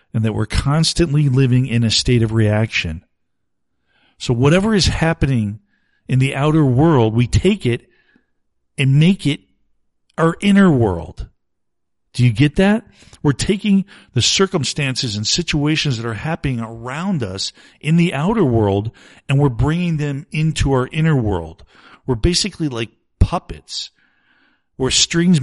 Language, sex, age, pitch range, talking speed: English, male, 50-69, 110-150 Hz, 140 wpm